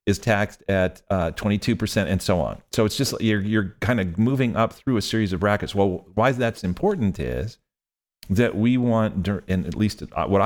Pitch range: 95-120 Hz